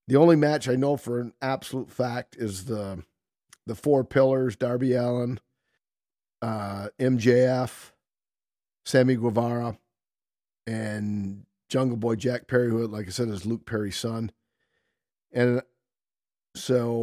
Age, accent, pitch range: 40-59, American, 110-135 Hz